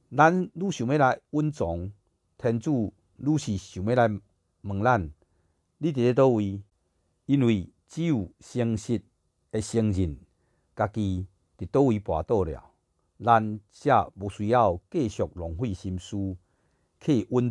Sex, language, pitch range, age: male, Chinese, 90-120 Hz, 50-69